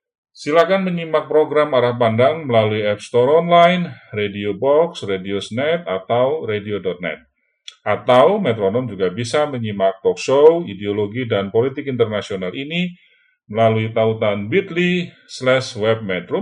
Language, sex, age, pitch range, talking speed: Indonesian, male, 40-59, 100-170 Hz, 110 wpm